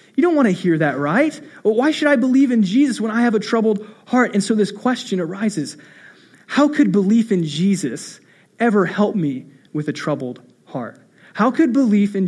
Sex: male